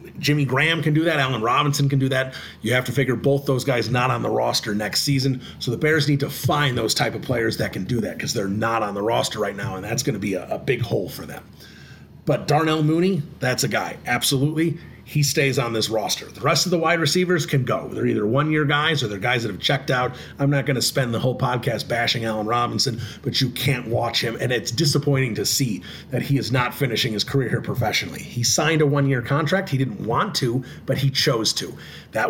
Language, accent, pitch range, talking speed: English, American, 120-145 Hz, 240 wpm